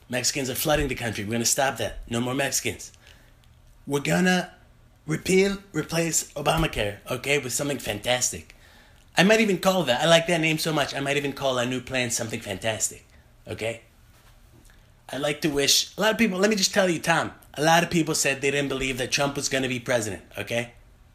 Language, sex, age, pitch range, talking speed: English, male, 30-49, 125-180 Hz, 210 wpm